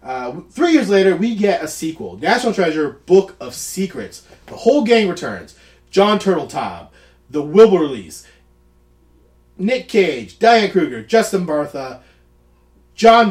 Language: English